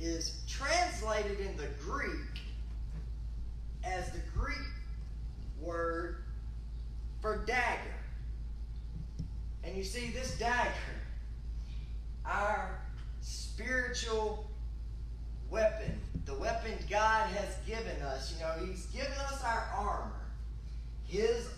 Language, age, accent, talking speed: English, 30-49, American, 90 wpm